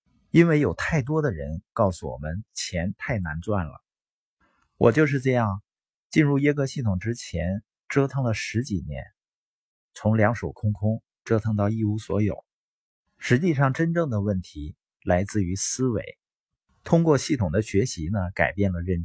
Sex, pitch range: male, 95-135 Hz